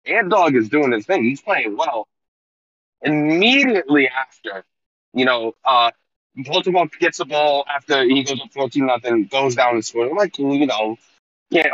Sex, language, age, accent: male, English, 20-39, American